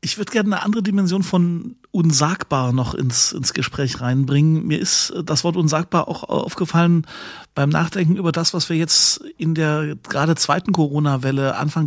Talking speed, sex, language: 165 wpm, male, German